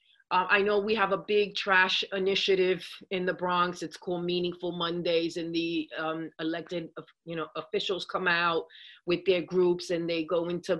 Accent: American